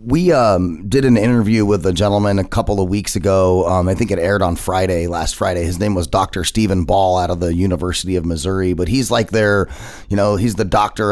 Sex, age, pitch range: male, 30-49, 90-110 Hz